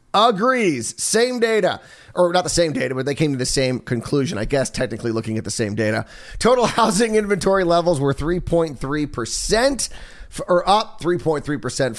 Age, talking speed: 30-49, 160 wpm